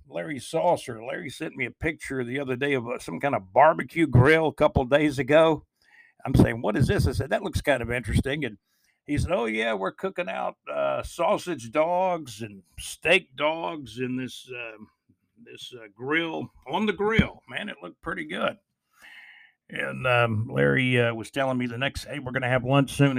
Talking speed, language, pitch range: 195 wpm, English, 115-140 Hz